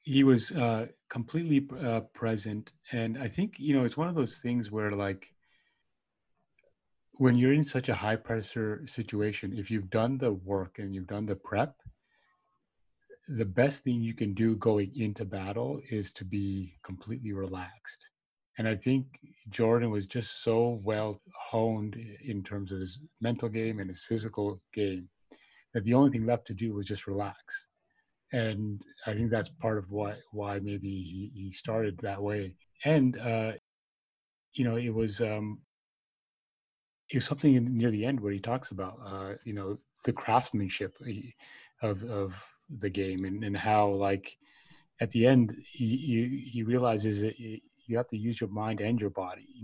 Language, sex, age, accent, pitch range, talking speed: English, male, 30-49, American, 100-120 Hz, 170 wpm